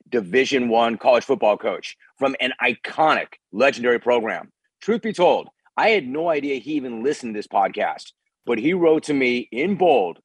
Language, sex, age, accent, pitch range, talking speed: English, male, 40-59, American, 120-150 Hz, 175 wpm